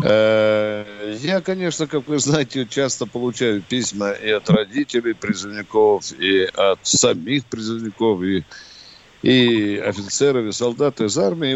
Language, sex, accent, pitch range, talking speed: Russian, male, native, 115-170 Hz, 120 wpm